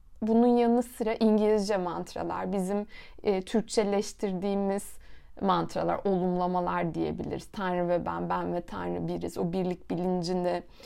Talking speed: 115 wpm